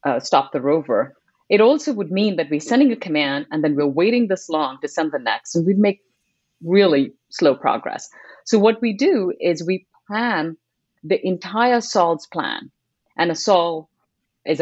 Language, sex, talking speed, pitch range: English, female, 180 wpm, 150-220 Hz